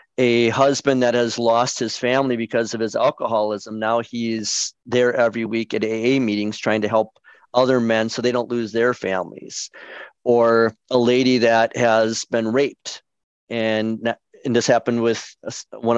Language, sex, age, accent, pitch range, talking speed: English, male, 40-59, American, 110-125 Hz, 160 wpm